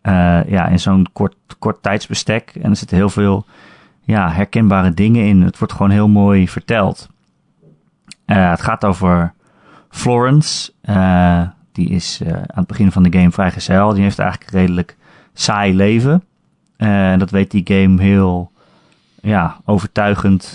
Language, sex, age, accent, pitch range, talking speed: Dutch, male, 30-49, Dutch, 90-105 Hz, 150 wpm